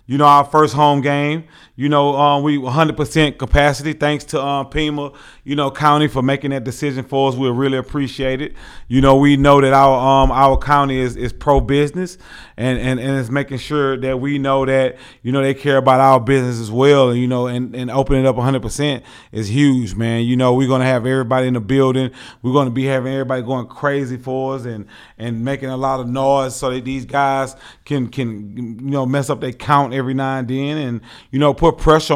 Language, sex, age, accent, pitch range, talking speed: English, male, 30-49, American, 125-140 Hz, 225 wpm